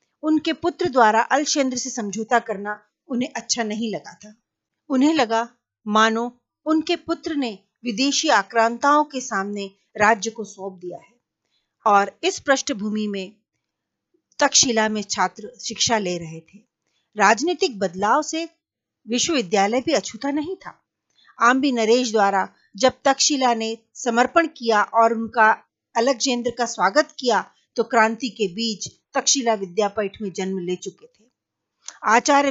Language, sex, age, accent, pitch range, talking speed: Hindi, female, 40-59, native, 210-285 Hz, 85 wpm